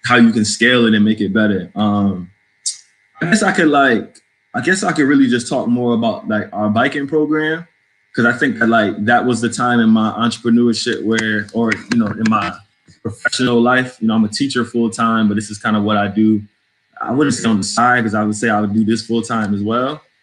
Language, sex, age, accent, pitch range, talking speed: English, male, 20-39, American, 105-120 Hz, 240 wpm